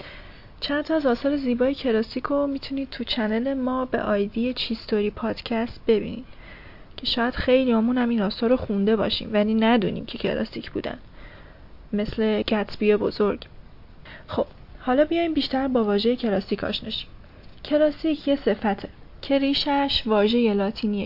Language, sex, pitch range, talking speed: Persian, female, 210-255 Hz, 130 wpm